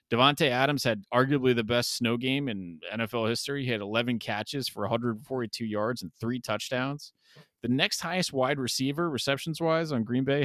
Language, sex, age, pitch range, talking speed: English, male, 20-39, 105-135 Hz, 180 wpm